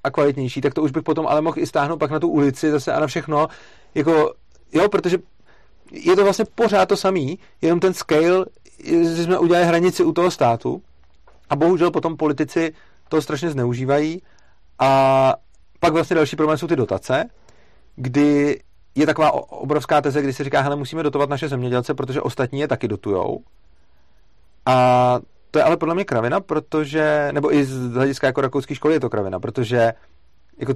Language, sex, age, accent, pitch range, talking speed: Czech, male, 40-59, native, 125-155 Hz, 180 wpm